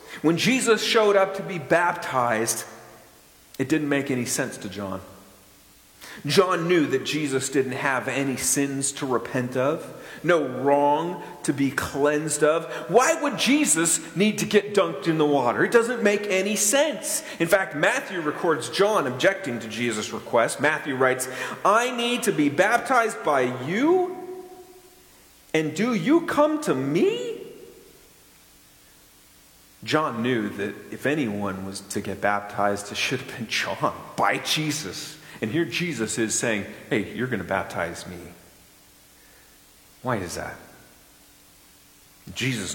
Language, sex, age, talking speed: English, male, 40-59, 140 wpm